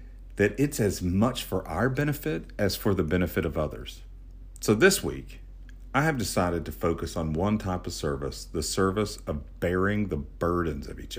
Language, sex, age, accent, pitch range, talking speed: English, male, 50-69, American, 80-100 Hz, 180 wpm